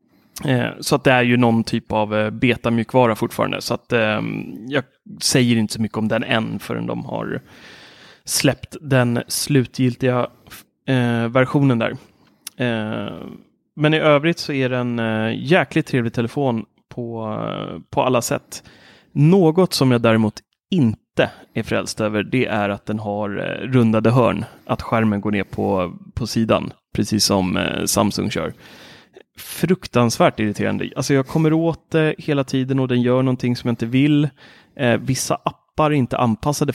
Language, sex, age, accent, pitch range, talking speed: Swedish, male, 30-49, native, 110-135 Hz, 155 wpm